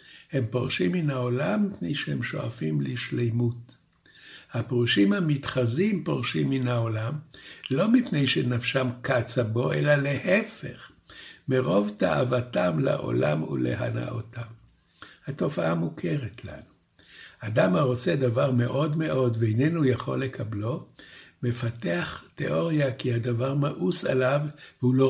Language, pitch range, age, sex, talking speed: Hebrew, 120-145 Hz, 60-79, male, 105 wpm